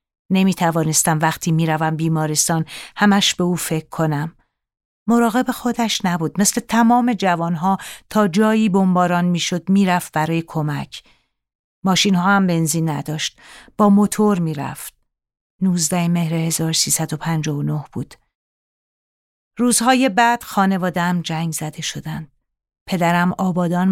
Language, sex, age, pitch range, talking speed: Persian, female, 40-59, 165-195 Hz, 115 wpm